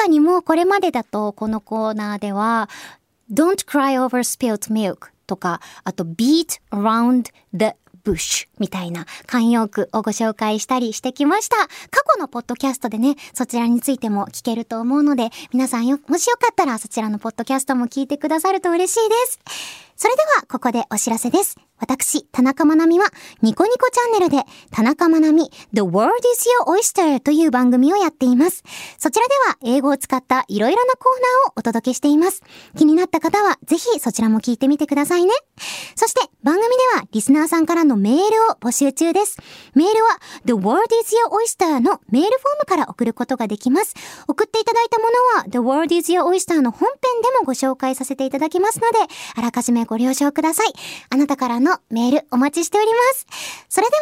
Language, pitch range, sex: Japanese, 240-375 Hz, male